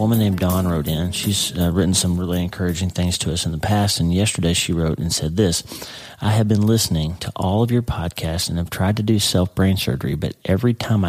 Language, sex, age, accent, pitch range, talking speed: English, male, 40-59, American, 90-105 Hz, 240 wpm